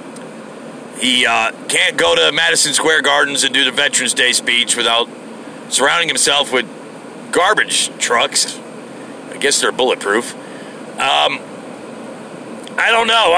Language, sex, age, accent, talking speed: English, male, 40-59, American, 125 wpm